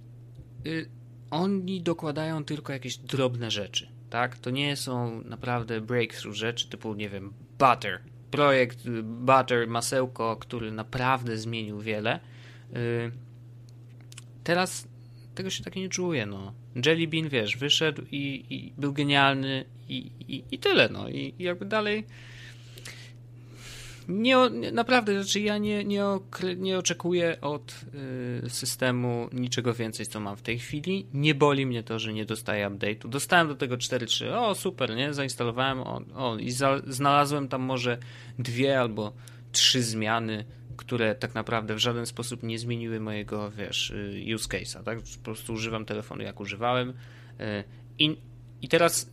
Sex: male